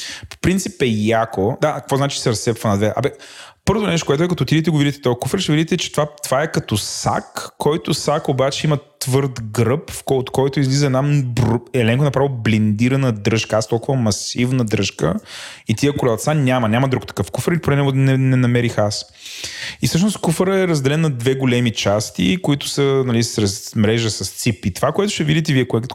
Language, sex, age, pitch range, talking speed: Bulgarian, male, 20-39, 110-140 Hz, 195 wpm